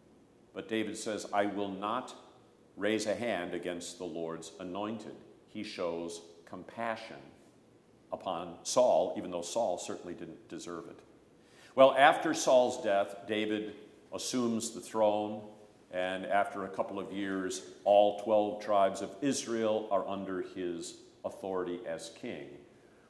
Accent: American